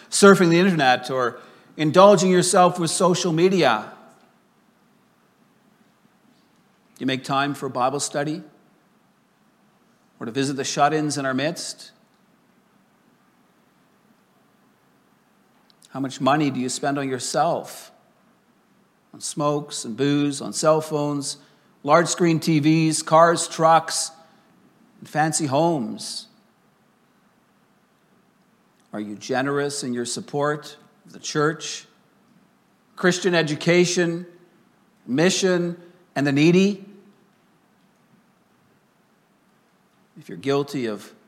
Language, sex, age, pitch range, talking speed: English, male, 50-69, 150-215 Hz, 100 wpm